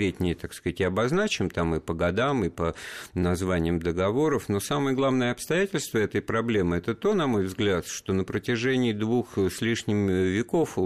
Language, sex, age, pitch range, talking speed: Russian, male, 50-69, 90-125 Hz, 165 wpm